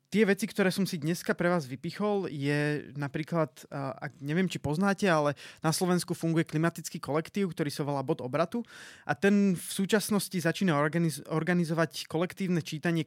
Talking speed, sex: 150 wpm, male